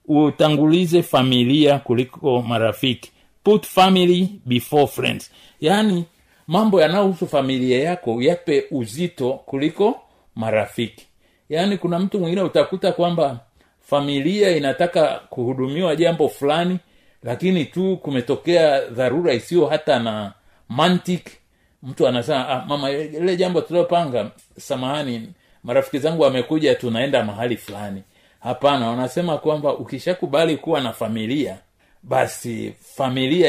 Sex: male